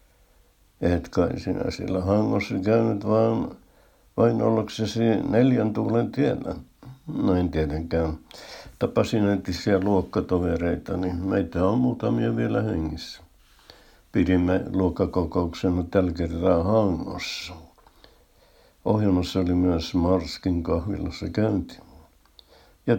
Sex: male